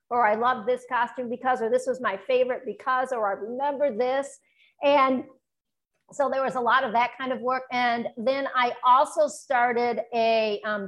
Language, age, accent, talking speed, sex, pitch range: English, 50-69, American, 190 wpm, female, 205-250 Hz